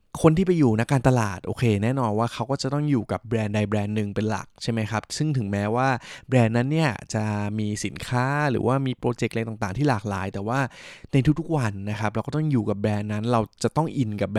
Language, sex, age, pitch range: Thai, male, 20-39, 105-130 Hz